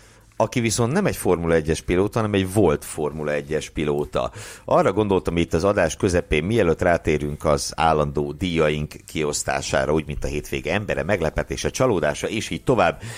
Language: Hungarian